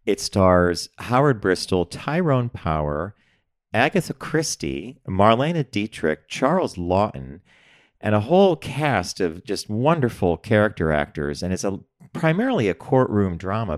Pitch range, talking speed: 80-115 Hz, 120 wpm